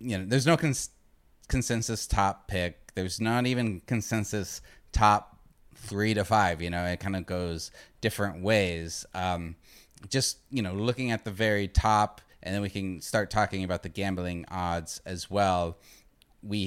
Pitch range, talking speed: 95-115 Hz, 165 wpm